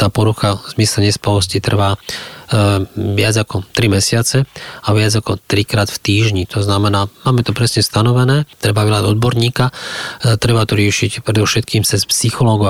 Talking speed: 160 wpm